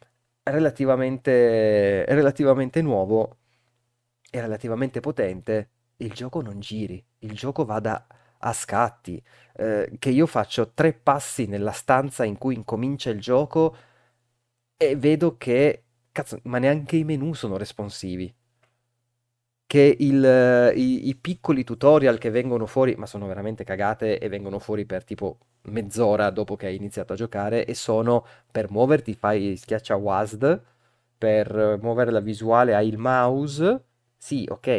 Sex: male